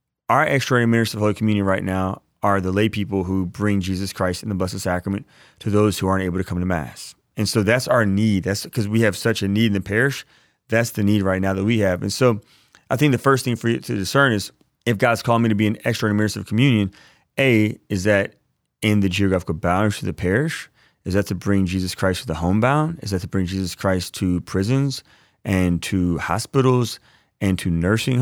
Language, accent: English, American